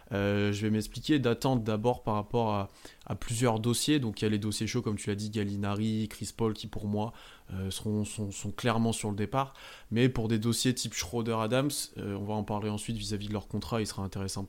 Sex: male